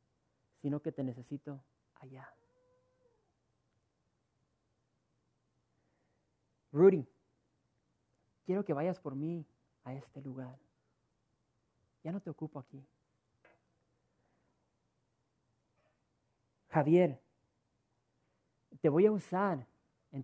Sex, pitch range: male, 125-160 Hz